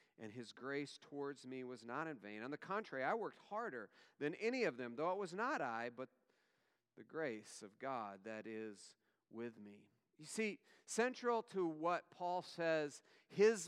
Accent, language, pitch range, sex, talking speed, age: American, English, 135-175 Hz, male, 180 wpm, 40-59